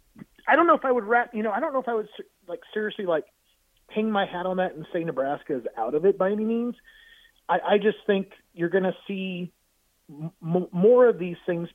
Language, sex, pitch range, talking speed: English, male, 145-190 Hz, 230 wpm